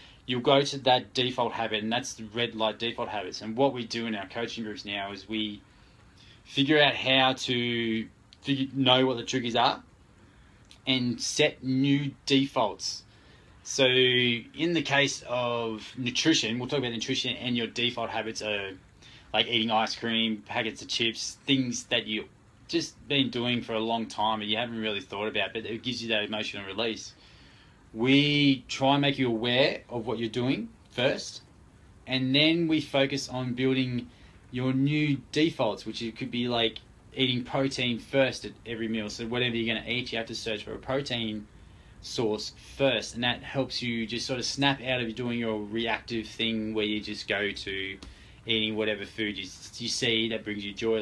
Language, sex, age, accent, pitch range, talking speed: English, male, 20-39, Australian, 110-130 Hz, 185 wpm